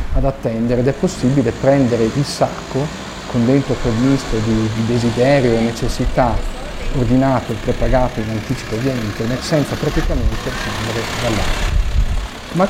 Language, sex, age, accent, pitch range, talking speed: Italian, male, 40-59, native, 115-140 Hz, 130 wpm